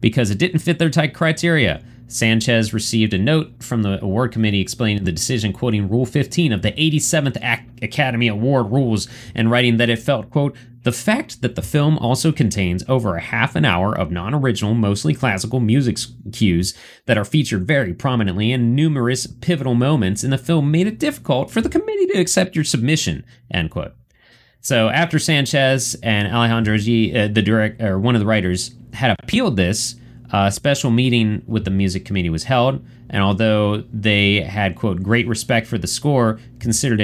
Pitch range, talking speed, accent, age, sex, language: 105-135 Hz, 175 wpm, American, 30-49, male, English